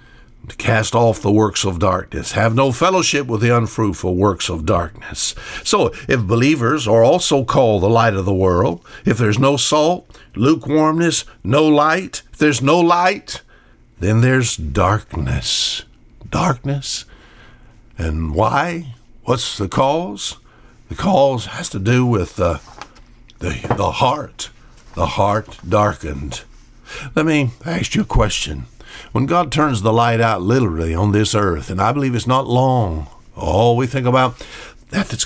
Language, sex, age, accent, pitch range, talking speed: English, male, 60-79, American, 100-130 Hz, 150 wpm